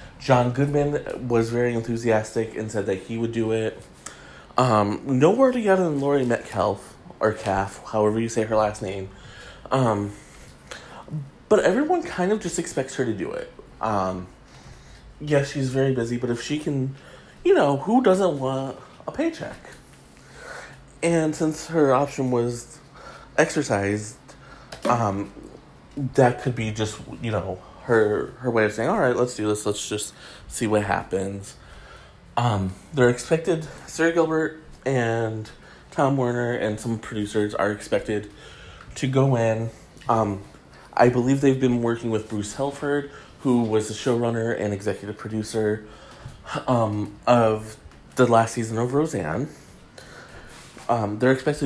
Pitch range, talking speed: 110-140 Hz, 140 wpm